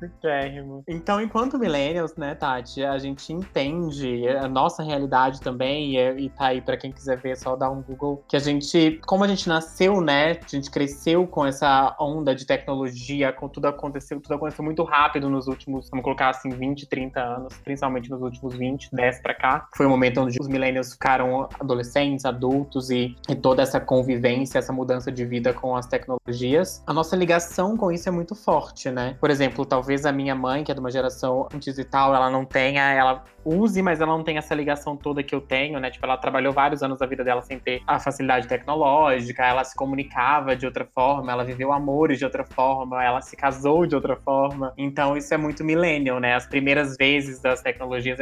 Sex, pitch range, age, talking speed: male, 130-155 Hz, 20-39, 210 wpm